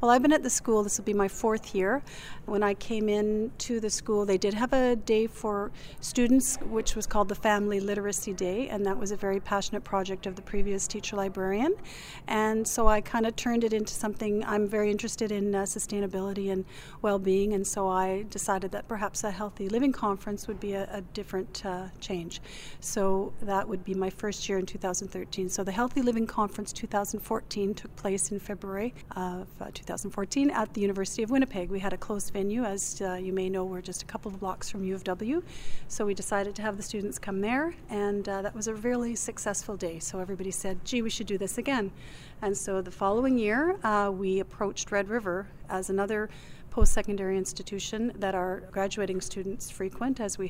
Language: English